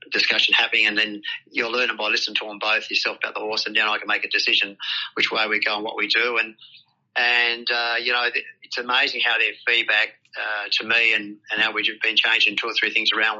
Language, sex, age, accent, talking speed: English, male, 40-59, Australian, 240 wpm